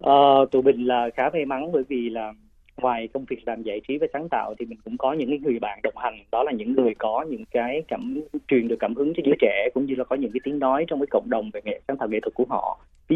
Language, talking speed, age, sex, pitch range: Vietnamese, 290 wpm, 20-39, male, 115-145 Hz